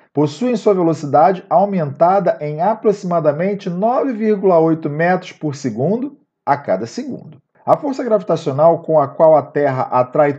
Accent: Brazilian